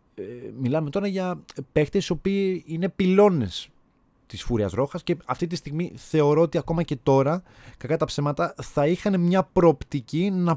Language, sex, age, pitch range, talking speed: Greek, male, 20-39, 120-170 Hz, 160 wpm